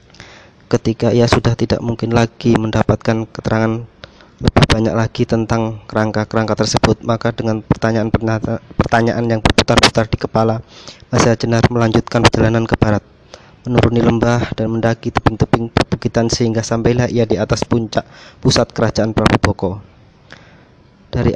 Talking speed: 125 wpm